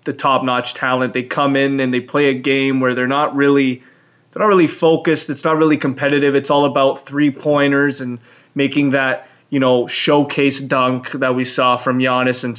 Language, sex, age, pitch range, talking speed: English, male, 20-39, 130-155 Hz, 190 wpm